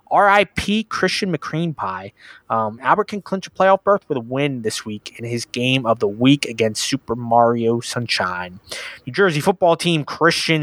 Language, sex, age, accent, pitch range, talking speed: English, male, 20-39, American, 120-175 Hz, 175 wpm